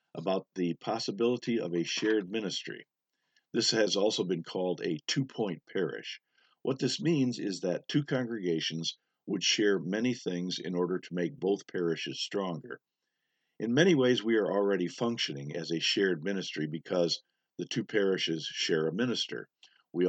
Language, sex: English, male